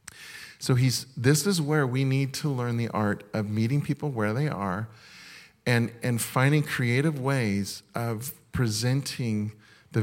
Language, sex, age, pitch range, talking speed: English, male, 40-59, 110-145 Hz, 150 wpm